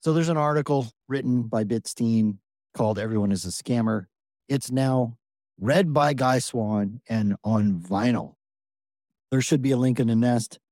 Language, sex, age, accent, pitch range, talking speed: English, male, 40-59, American, 105-130 Hz, 160 wpm